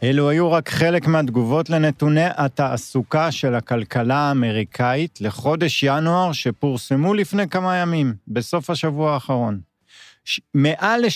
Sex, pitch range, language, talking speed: male, 120-160 Hz, Hebrew, 110 wpm